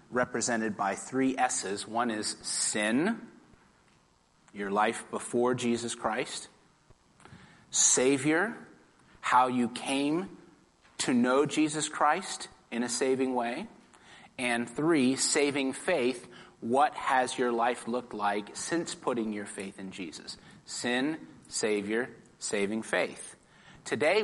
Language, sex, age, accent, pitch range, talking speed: English, male, 30-49, American, 120-170 Hz, 110 wpm